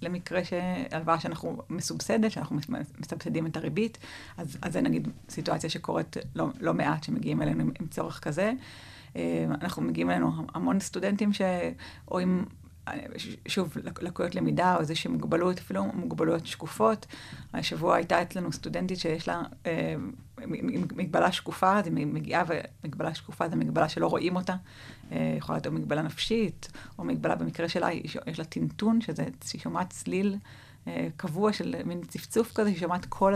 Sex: female